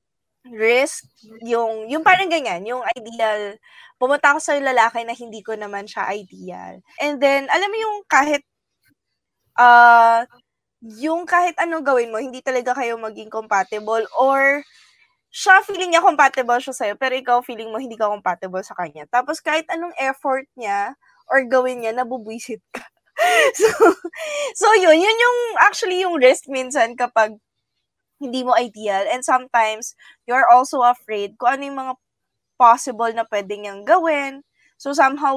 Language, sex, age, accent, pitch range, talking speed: Filipino, female, 20-39, native, 220-285 Hz, 155 wpm